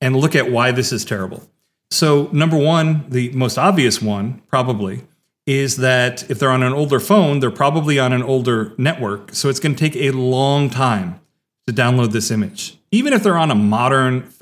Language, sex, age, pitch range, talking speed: English, male, 40-59, 120-145 Hz, 190 wpm